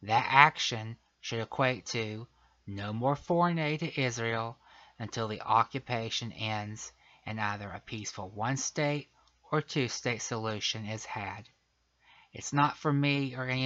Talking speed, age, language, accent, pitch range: 135 wpm, 20-39, English, American, 110-130 Hz